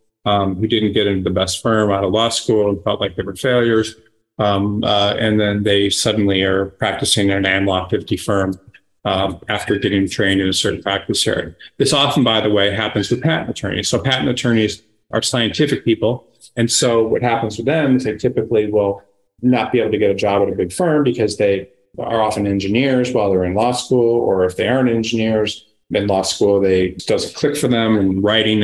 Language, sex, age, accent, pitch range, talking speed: English, male, 30-49, American, 95-115 Hz, 210 wpm